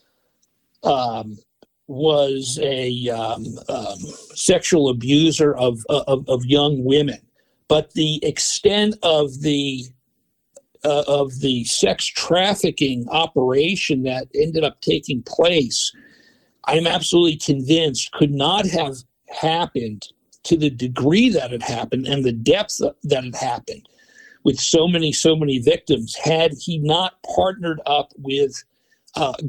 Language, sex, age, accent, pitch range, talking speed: English, male, 50-69, American, 135-170 Hz, 125 wpm